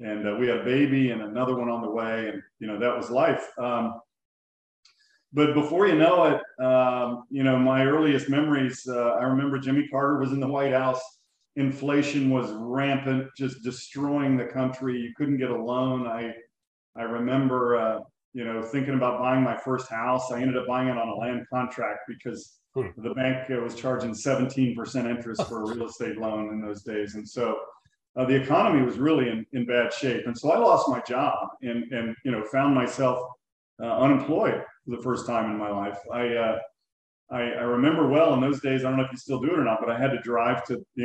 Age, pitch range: 40-59, 115-130 Hz